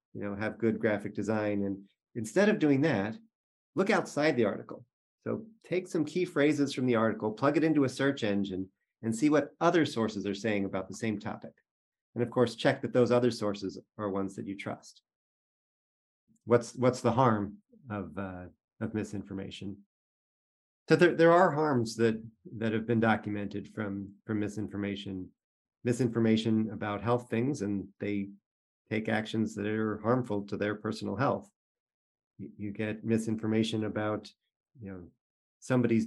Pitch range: 100-120 Hz